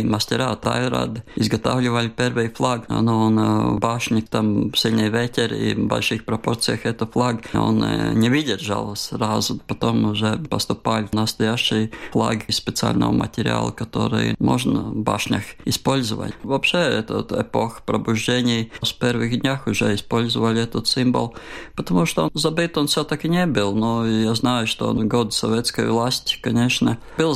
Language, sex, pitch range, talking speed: Russian, male, 110-120 Hz, 135 wpm